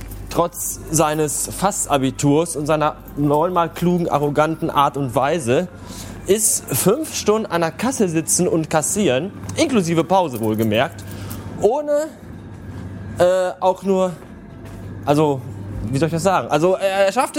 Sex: male